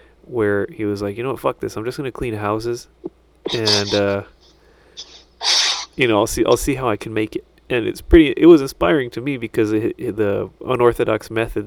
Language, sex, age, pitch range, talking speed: English, male, 30-49, 105-125 Hz, 215 wpm